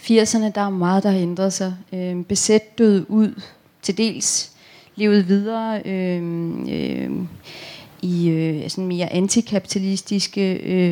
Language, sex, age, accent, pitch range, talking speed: Danish, female, 30-49, native, 185-230 Hz, 95 wpm